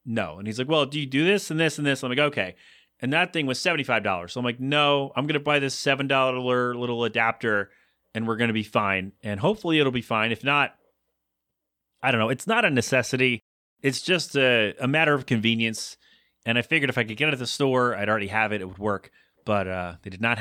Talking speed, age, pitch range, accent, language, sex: 245 wpm, 30-49, 105-145 Hz, American, English, male